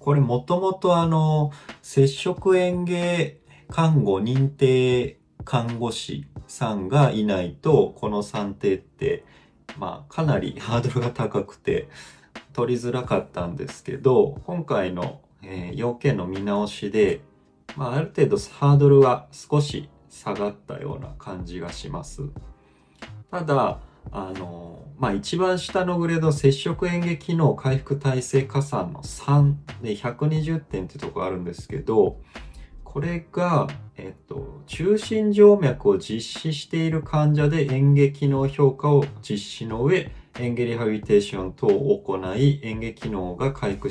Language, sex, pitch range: Japanese, male, 105-155 Hz